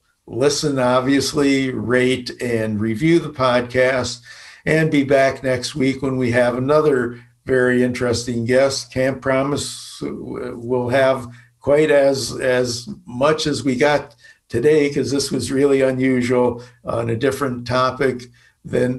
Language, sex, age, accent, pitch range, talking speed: English, male, 60-79, American, 120-135 Hz, 130 wpm